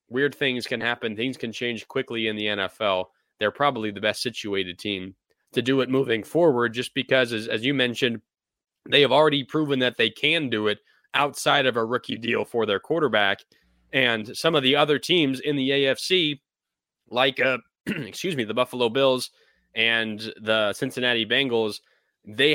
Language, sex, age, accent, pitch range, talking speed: English, male, 20-39, American, 105-130 Hz, 175 wpm